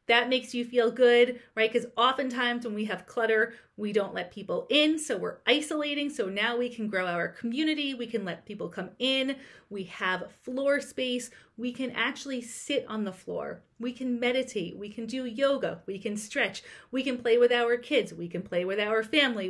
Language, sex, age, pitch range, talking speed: English, female, 30-49, 200-255 Hz, 205 wpm